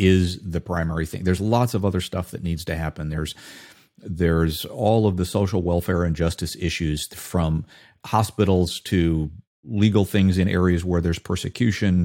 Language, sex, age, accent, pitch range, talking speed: English, male, 50-69, American, 85-100 Hz, 165 wpm